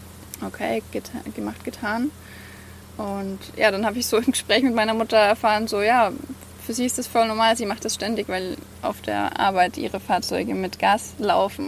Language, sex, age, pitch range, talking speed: English, female, 20-39, 180-230 Hz, 190 wpm